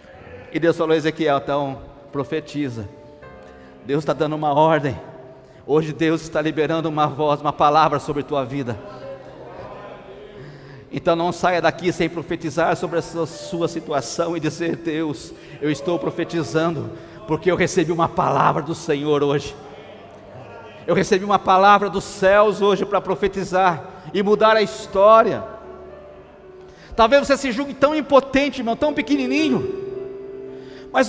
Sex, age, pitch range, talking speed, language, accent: male, 50-69, 160-225 Hz, 135 wpm, Portuguese, Brazilian